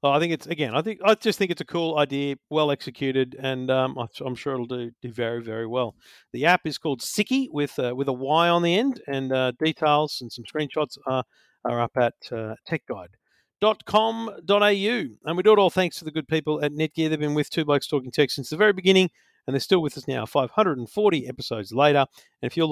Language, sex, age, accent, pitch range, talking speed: English, male, 50-69, Australian, 135-175 Hz, 225 wpm